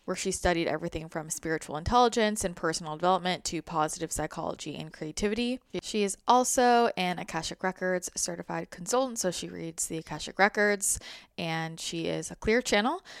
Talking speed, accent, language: 160 wpm, American, English